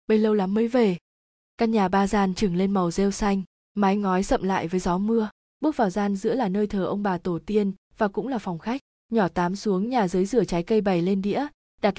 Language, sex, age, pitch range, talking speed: Vietnamese, female, 20-39, 190-230 Hz, 245 wpm